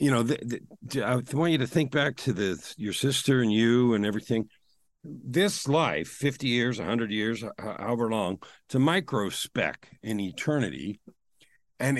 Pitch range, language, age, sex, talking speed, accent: 105-135 Hz, English, 50-69, male, 160 wpm, American